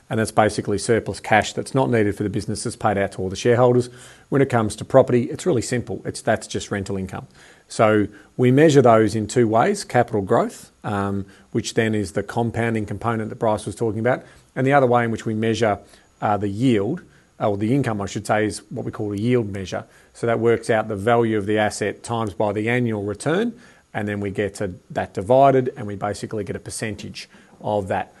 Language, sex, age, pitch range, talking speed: English, male, 40-59, 105-125 Hz, 225 wpm